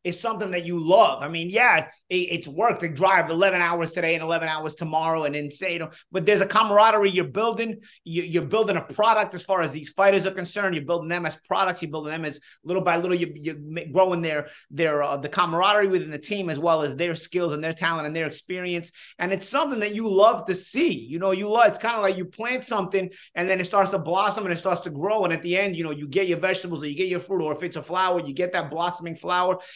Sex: male